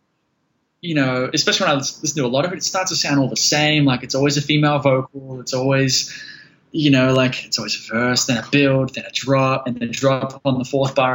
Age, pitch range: 20-39, 130-145 Hz